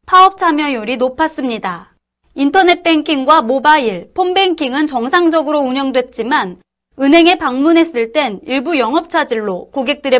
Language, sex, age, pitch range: Korean, female, 30-49, 250-335 Hz